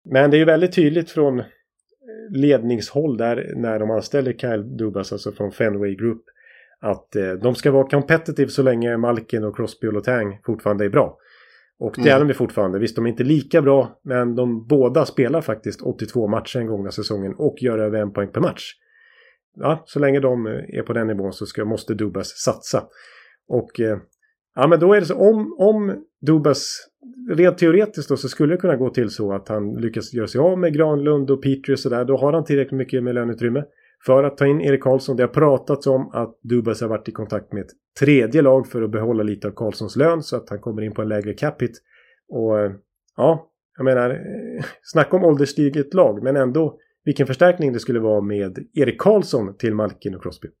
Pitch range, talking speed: 110-150 Hz, 205 wpm